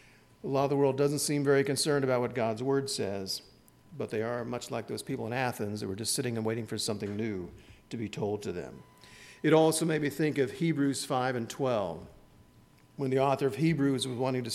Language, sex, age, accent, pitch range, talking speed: English, male, 50-69, American, 115-145 Hz, 225 wpm